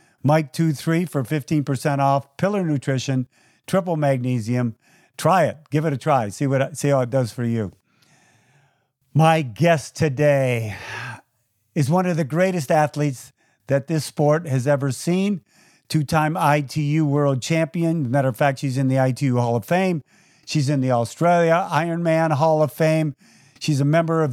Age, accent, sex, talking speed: 50-69, American, male, 160 wpm